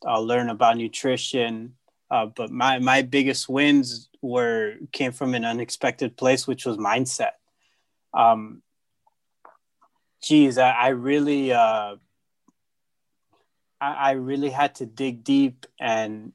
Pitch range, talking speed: 115-135 Hz, 120 wpm